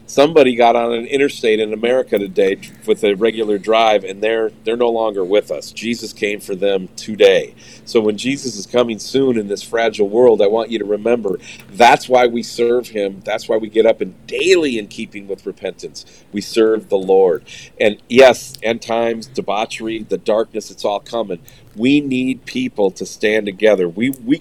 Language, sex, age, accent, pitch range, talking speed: English, male, 40-59, American, 110-135 Hz, 190 wpm